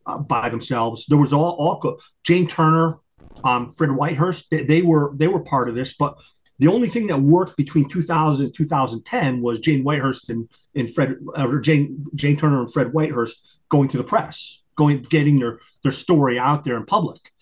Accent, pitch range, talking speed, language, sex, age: American, 130-155 Hz, 190 wpm, English, male, 30-49